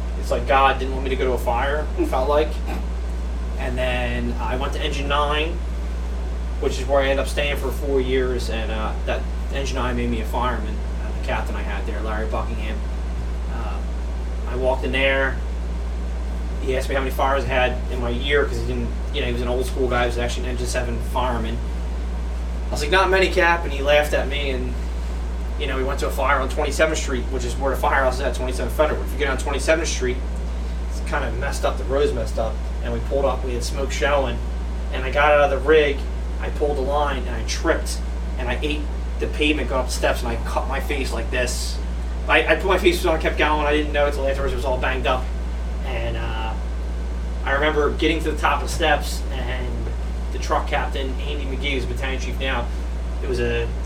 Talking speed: 235 wpm